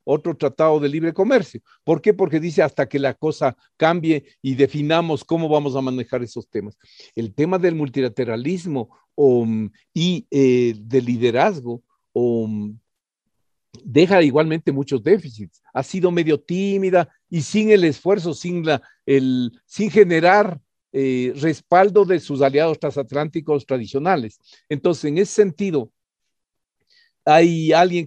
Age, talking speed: 50-69, 135 wpm